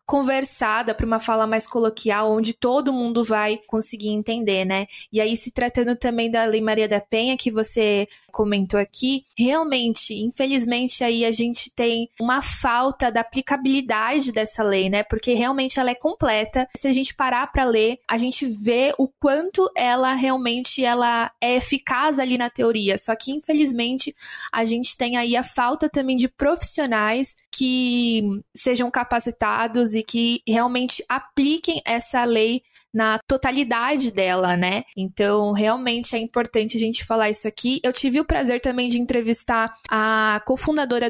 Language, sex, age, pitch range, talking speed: Portuguese, female, 20-39, 225-260 Hz, 155 wpm